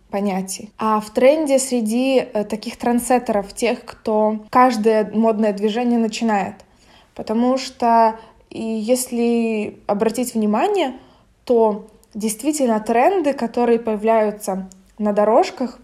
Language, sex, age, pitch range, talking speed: Russian, female, 20-39, 215-255 Hz, 95 wpm